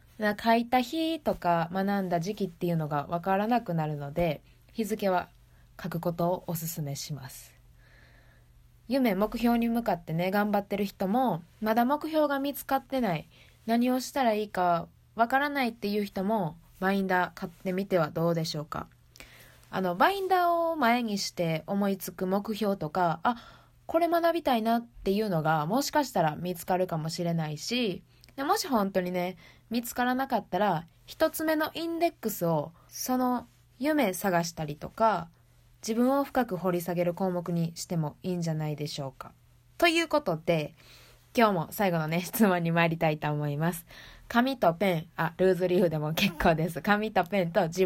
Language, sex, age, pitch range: Japanese, female, 20-39, 165-230 Hz